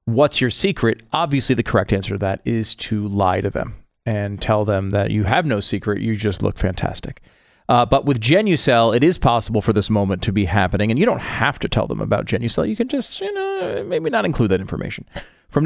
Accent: American